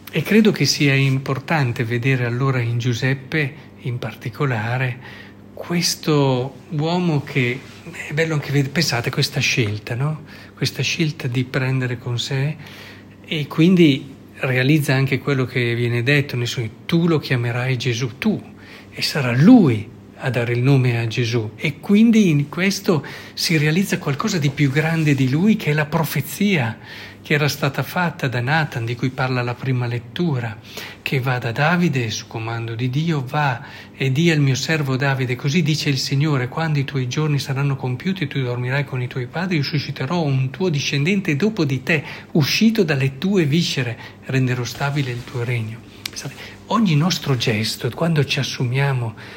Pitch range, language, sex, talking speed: 125-155 Hz, Italian, male, 165 wpm